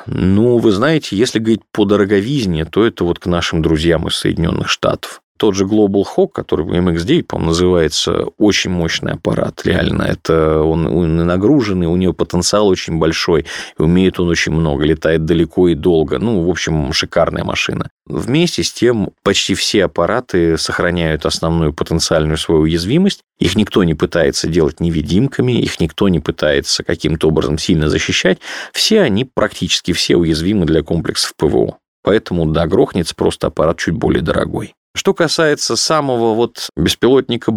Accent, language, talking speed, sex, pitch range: native, Russian, 155 wpm, male, 80-100 Hz